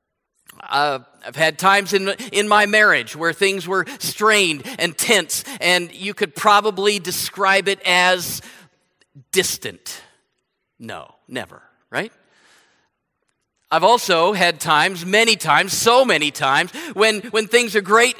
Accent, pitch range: American, 170-220 Hz